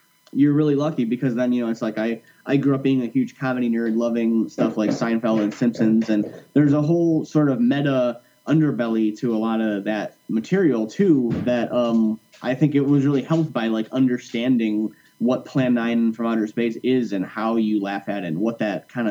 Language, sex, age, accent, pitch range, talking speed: English, male, 30-49, American, 110-135 Hz, 210 wpm